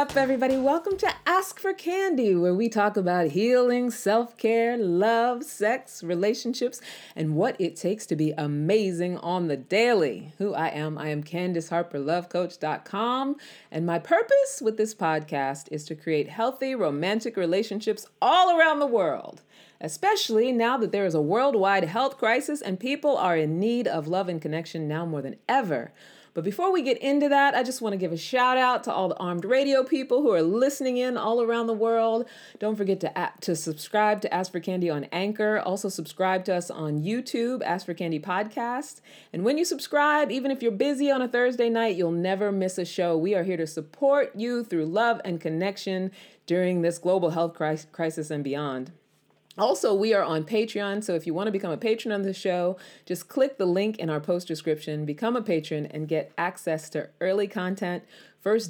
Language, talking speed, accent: English, 190 wpm, American